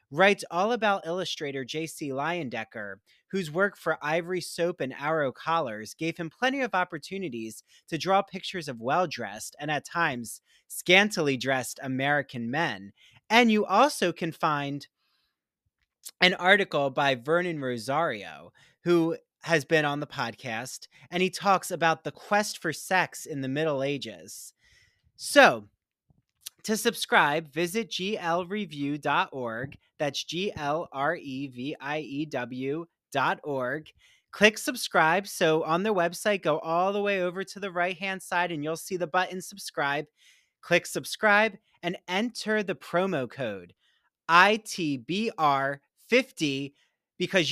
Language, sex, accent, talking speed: English, male, American, 120 wpm